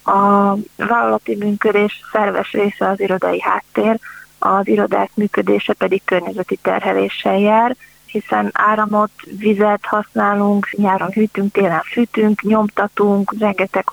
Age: 30-49